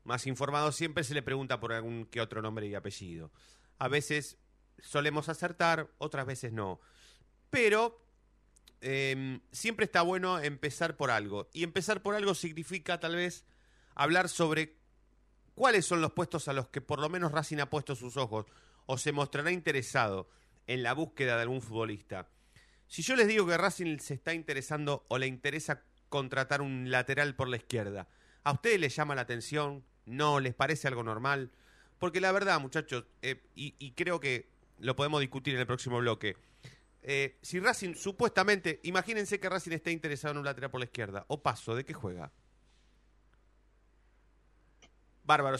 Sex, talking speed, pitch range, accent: male, 170 wpm, 125-170 Hz, Argentinian